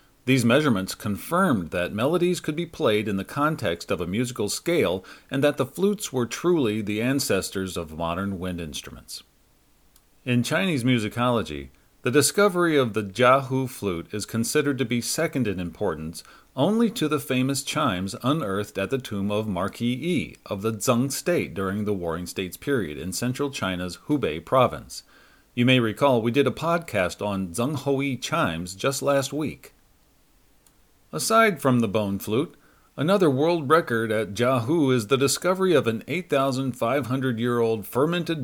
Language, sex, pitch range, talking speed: English, male, 105-140 Hz, 160 wpm